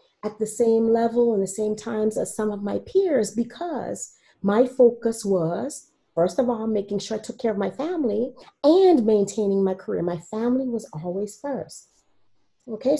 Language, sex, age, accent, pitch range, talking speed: English, female, 40-59, American, 205-260 Hz, 175 wpm